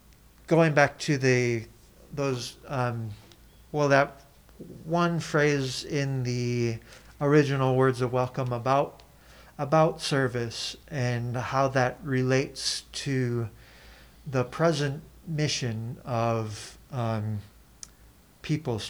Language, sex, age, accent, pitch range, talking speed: English, male, 40-59, American, 115-145 Hz, 95 wpm